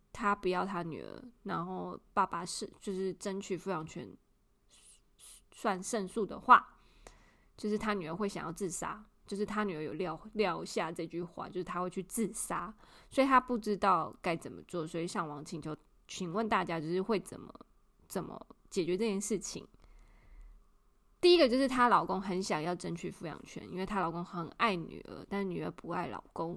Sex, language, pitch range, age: female, Chinese, 175-215 Hz, 20-39